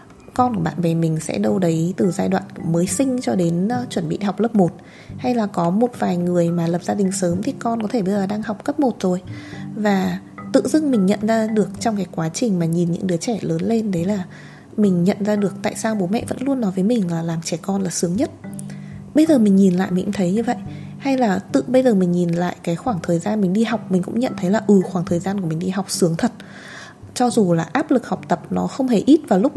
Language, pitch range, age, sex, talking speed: Vietnamese, 175-230 Hz, 20-39, female, 275 wpm